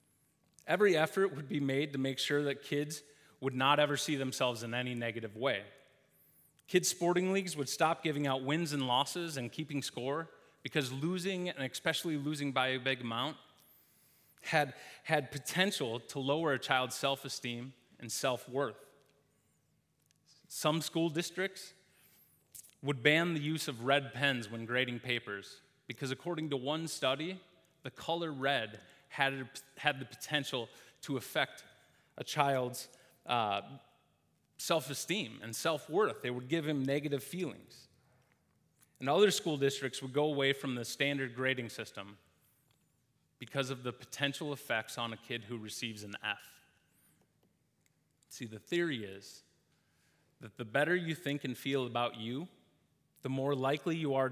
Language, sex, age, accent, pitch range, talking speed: English, male, 30-49, American, 125-150 Hz, 145 wpm